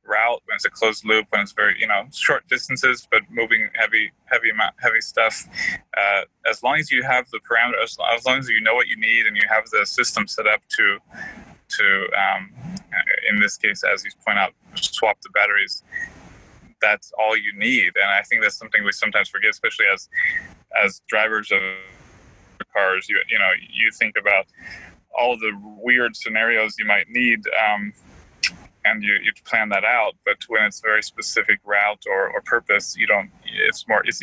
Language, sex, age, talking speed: English, male, 20-39, 195 wpm